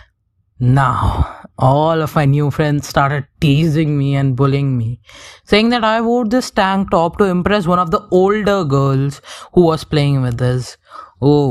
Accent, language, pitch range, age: Indian, English, 125-185 Hz, 20-39